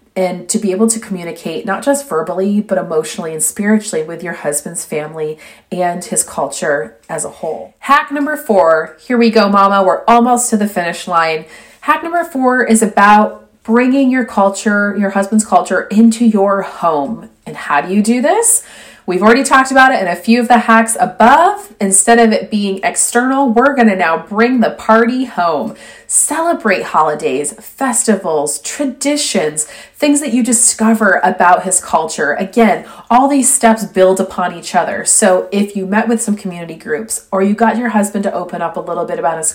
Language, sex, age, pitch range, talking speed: English, female, 30-49, 180-235 Hz, 180 wpm